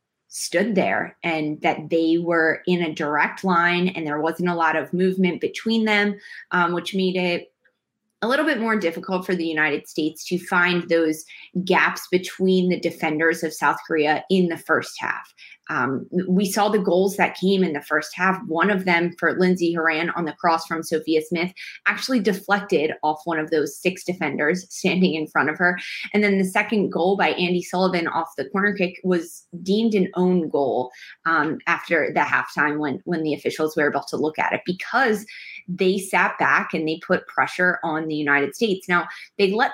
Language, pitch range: English, 165-190 Hz